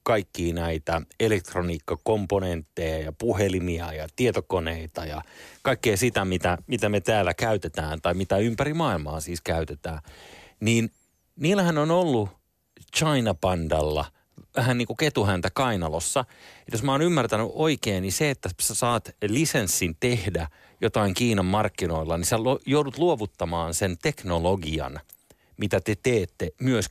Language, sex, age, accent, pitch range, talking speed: Finnish, male, 30-49, native, 85-125 Hz, 130 wpm